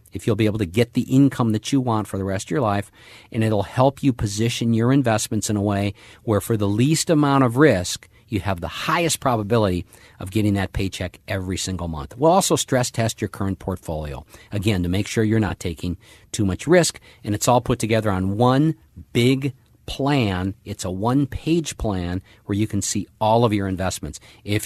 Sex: male